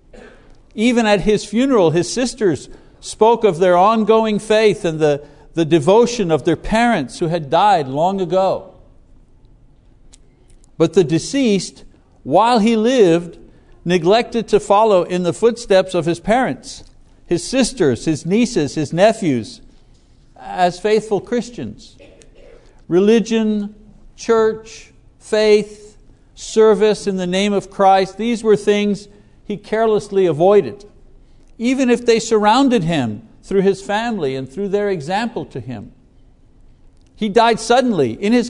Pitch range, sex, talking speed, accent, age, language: 165-220 Hz, male, 125 wpm, American, 60-79, English